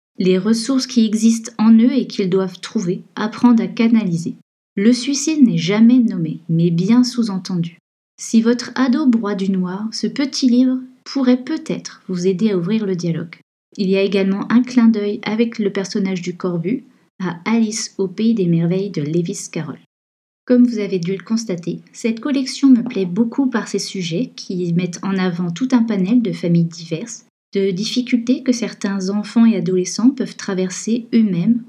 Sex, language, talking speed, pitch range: female, French, 175 wpm, 185-240 Hz